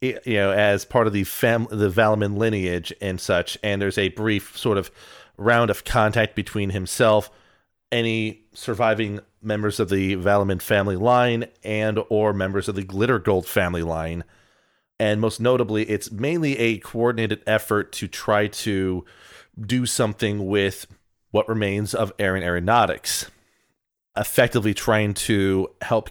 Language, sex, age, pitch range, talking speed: English, male, 30-49, 95-110 Hz, 145 wpm